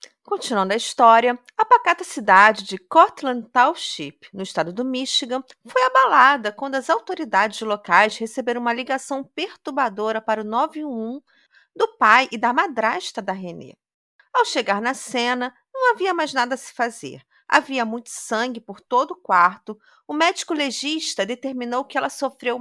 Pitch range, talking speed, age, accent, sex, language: 220-315 Hz, 155 wpm, 40-59, Brazilian, female, Portuguese